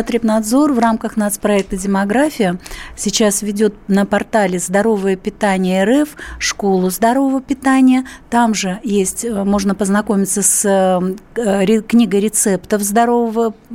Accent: native